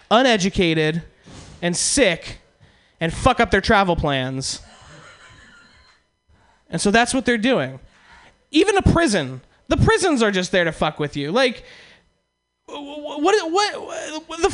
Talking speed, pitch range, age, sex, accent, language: 130 wpm, 185-280 Hz, 20-39, male, American, English